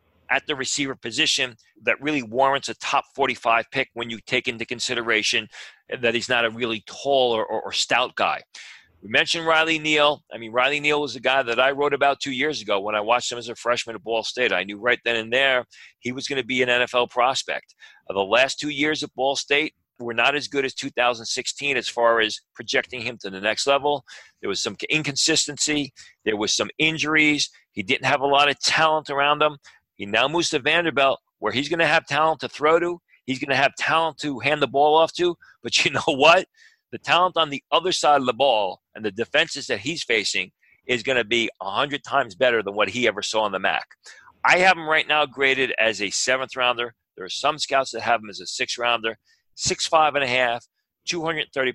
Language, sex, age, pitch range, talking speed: English, male, 40-59, 120-150 Hz, 225 wpm